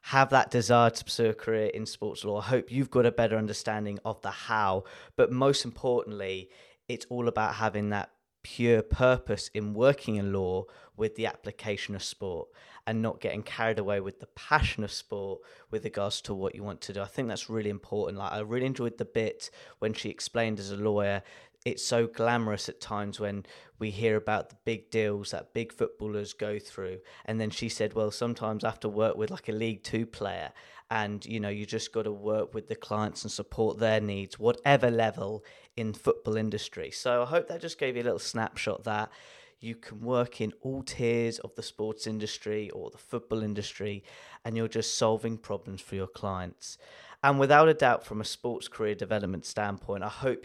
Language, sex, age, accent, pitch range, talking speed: English, male, 20-39, British, 105-120 Hz, 205 wpm